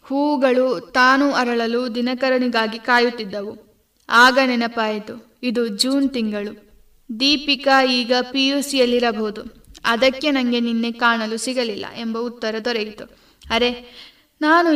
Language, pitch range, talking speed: Kannada, 230-265 Hz, 95 wpm